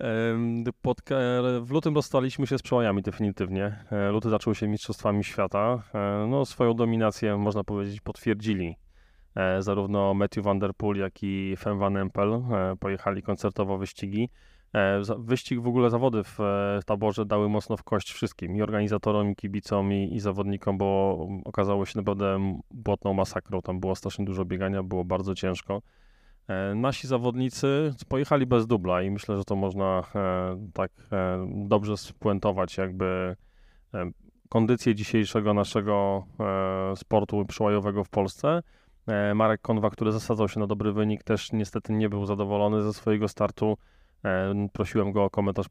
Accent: native